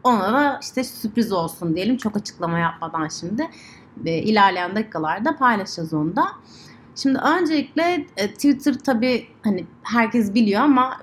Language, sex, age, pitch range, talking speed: Turkish, female, 30-49, 185-245 Hz, 125 wpm